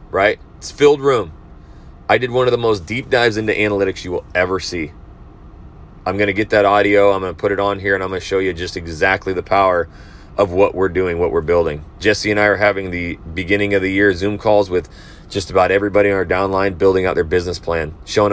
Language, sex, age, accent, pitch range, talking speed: English, male, 30-49, American, 85-105 Hz, 240 wpm